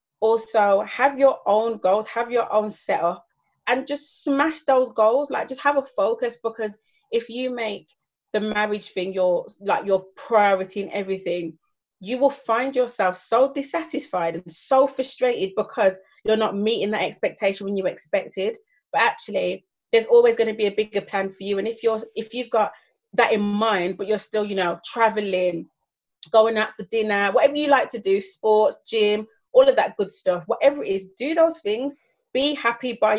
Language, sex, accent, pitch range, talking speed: English, female, British, 205-270 Hz, 185 wpm